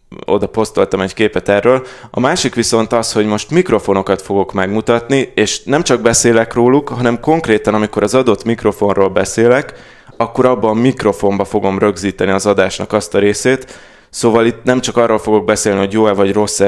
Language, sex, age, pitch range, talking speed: Hungarian, male, 20-39, 100-120 Hz, 175 wpm